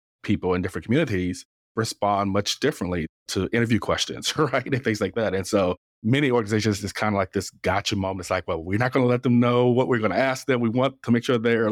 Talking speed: 245 wpm